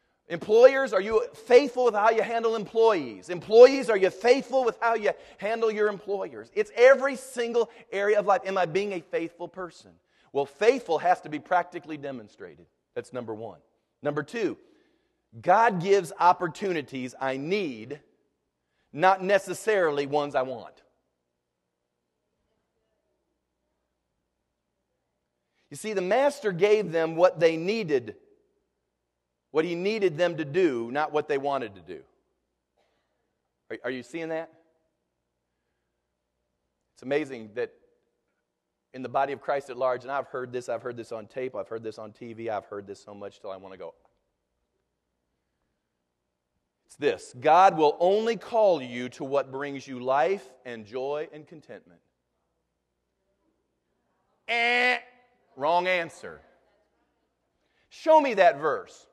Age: 40-59